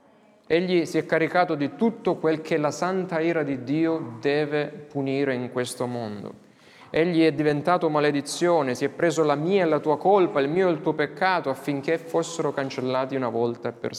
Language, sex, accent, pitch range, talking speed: Italian, male, native, 135-165 Hz, 190 wpm